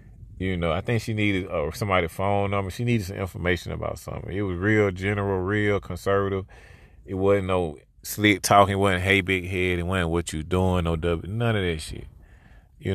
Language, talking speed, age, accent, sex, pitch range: English, 210 wpm, 30-49, American, male, 80-100 Hz